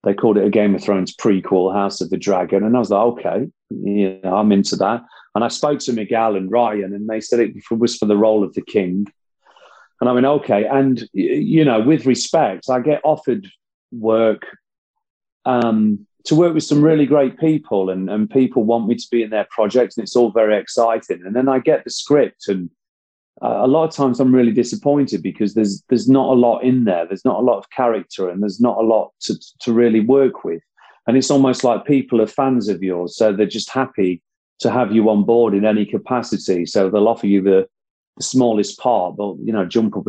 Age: 40-59